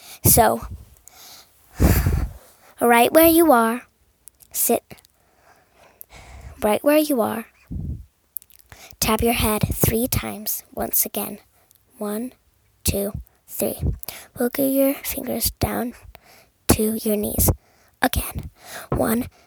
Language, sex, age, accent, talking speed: English, female, 10-29, American, 90 wpm